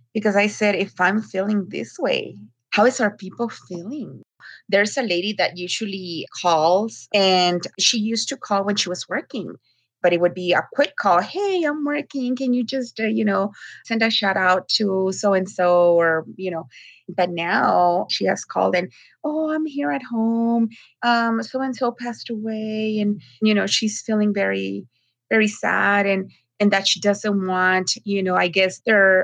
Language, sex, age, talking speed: English, female, 30-49, 180 wpm